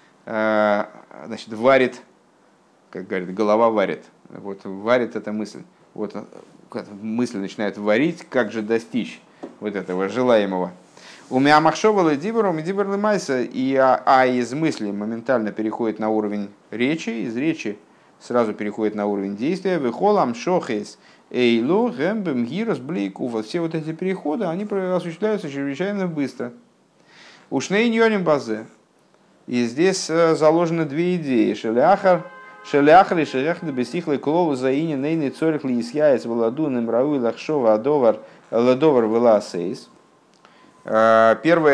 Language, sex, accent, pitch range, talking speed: Russian, male, native, 115-160 Hz, 105 wpm